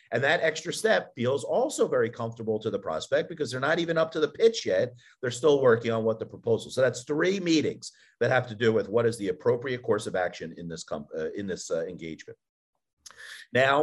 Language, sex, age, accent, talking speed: English, male, 50-69, American, 220 wpm